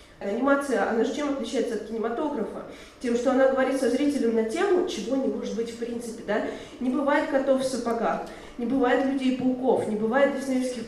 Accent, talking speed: native, 175 wpm